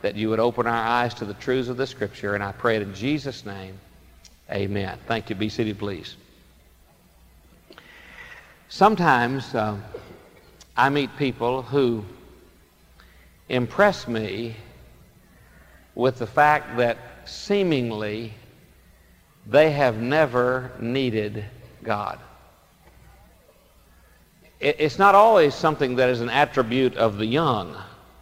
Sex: male